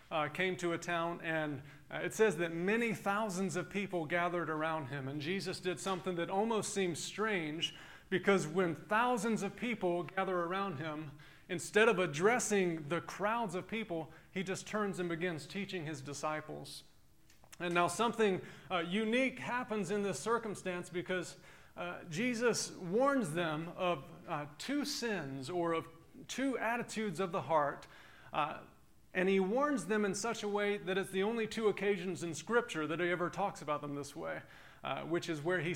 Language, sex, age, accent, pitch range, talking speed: English, male, 30-49, American, 165-195 Hz, 175 wpm